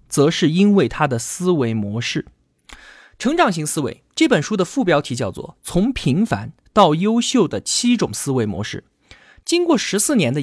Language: Chinese